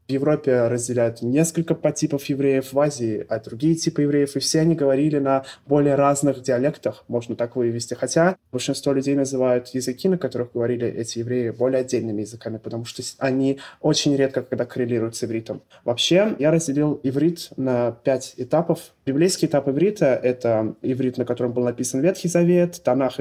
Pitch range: 125-160 Hz